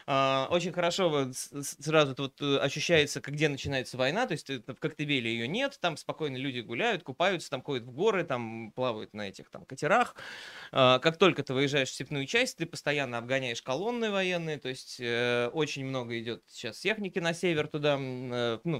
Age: 20-39